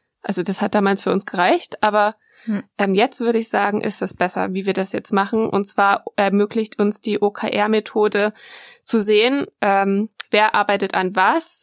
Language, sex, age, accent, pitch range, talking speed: German, female, 20-39, German, 205-235 Hz, 175 wpm